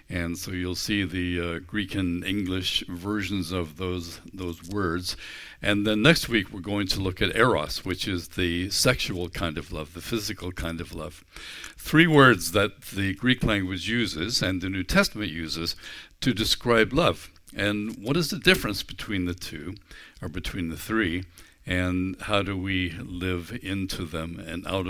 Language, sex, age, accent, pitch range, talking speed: English, male, 60-79, American, 90-110 Hz, 175 wpm